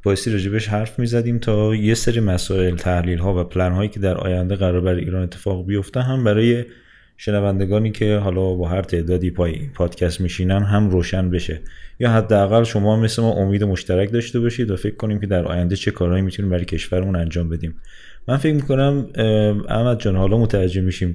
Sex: male